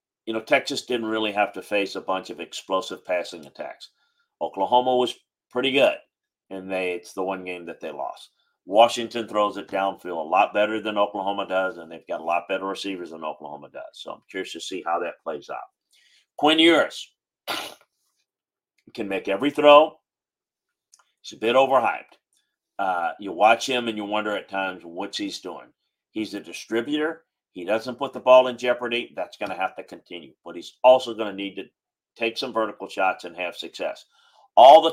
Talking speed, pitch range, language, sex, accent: 190 wpm, 95-125 Hz, English, male, American